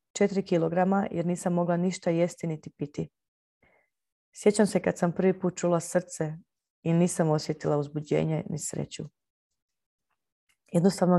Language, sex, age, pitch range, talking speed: Croatian, female, 30-49, 160-190 Hz, 130 wpm